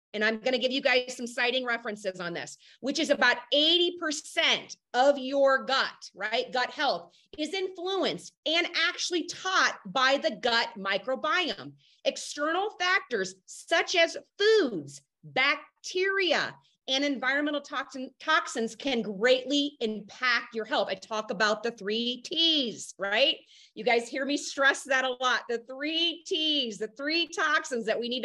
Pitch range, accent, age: 235-320 Hz, American, 30-49